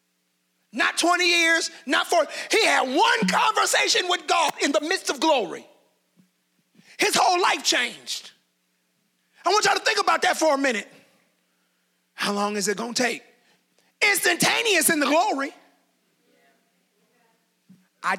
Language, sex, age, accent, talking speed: English, male, 30-49, American, 140 wpm